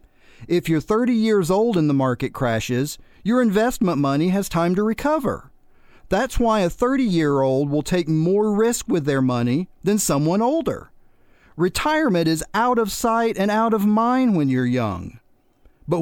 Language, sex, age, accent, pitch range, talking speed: English, male, 40-59, American, 145-220 Hz, 160 wpm